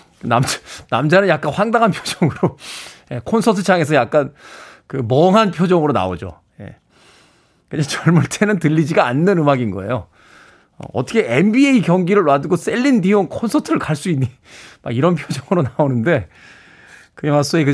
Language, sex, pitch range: Korean, male, 130-220 Hz